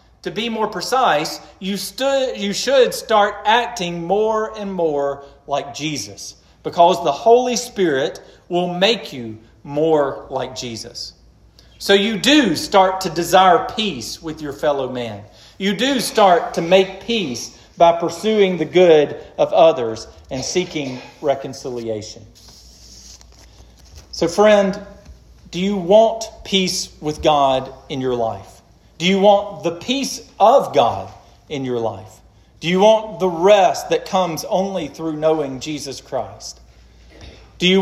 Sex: male